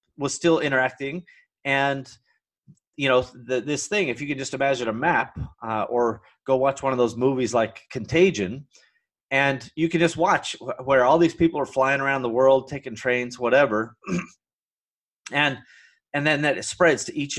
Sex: male